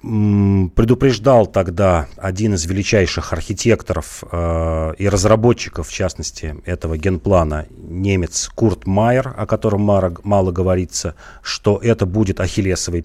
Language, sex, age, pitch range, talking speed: Russian, male, 40-59, 85-105 Hz, 105 wpm